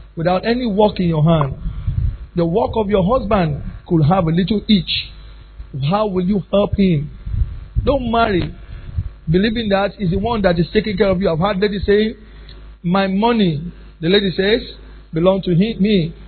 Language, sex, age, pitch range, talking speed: English, male, 50-69, 160-230 Hz, 170 wpm